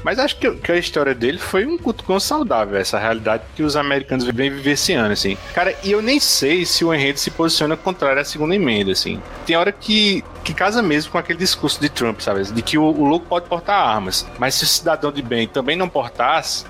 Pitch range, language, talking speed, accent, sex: 125-175 Hz, Portuguese, 235 wpm, Brazilian, male